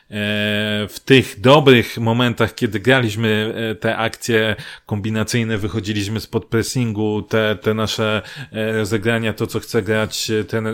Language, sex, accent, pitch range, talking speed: Polish, male, native, 115-150 Hz, 115 wpm